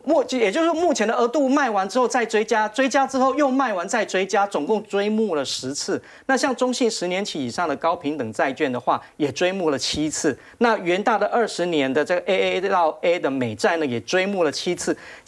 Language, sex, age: Chinese, male, 40-59